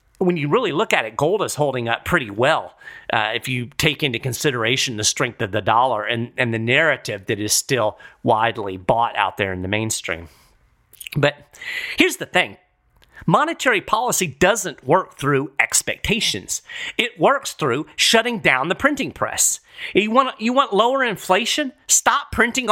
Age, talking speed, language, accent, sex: 40-59, 165 wpm, English, American, male